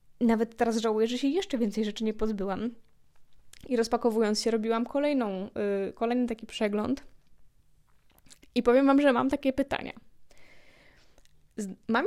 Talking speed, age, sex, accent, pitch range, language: 125 wpm, 20-39, female, native, 210-240 Hz, Polish